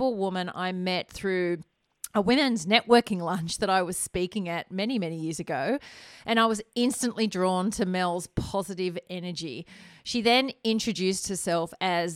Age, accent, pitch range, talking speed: 30-49, Australian, 175-225 Hz, 155 wpm